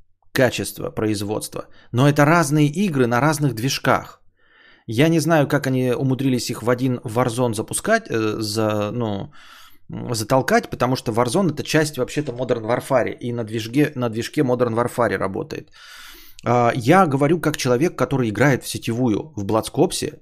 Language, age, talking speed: Bulgarian, 20-39, 145 wpm